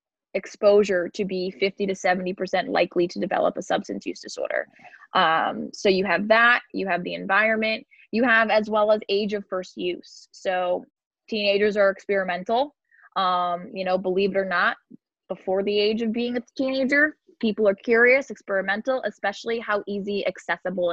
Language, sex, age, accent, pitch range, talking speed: English, female, 20-39, American, 180-215 Hz, 165 wpm